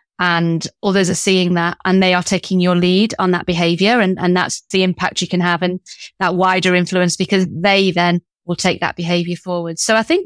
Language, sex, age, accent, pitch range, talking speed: English, female, 30-49, British, 175-200 Hz, 215 wpm